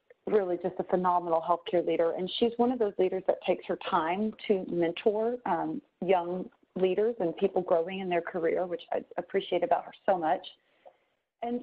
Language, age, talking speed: English, 30-49, 180 wpm